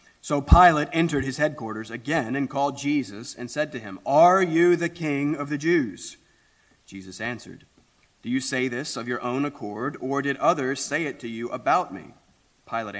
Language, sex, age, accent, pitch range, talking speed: English, male, 30-49, American, 110-145 Hz, 185 wpm